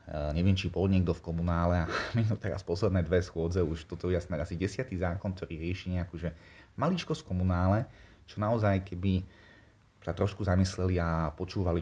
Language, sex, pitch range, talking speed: Slovak, male, 80-95 Hz, 175 wpm